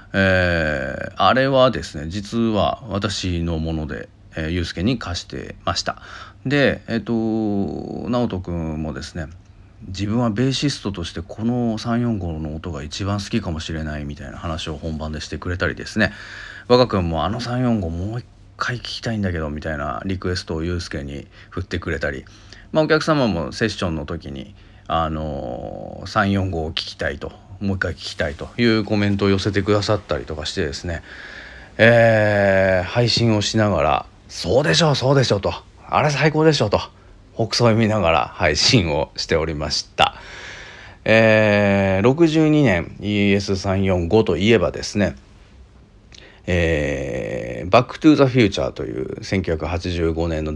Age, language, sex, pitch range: 40-59, Japanese, male, 85-110 Hz